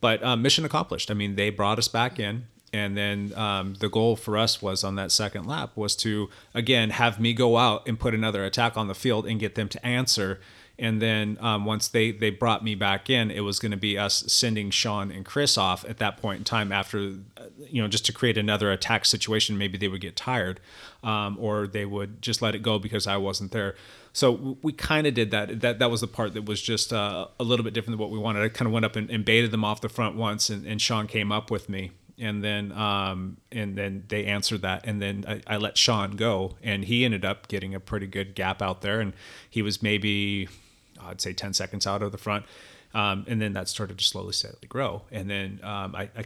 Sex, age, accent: male, 30-49, American